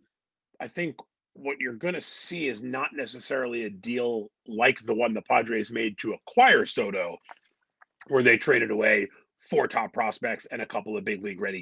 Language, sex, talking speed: English, male, 180 wpm